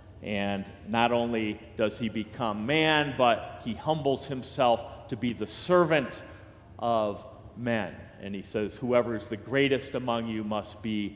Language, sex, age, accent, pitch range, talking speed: English, male, 40-59, American, 105-125 Hz, 150 wpm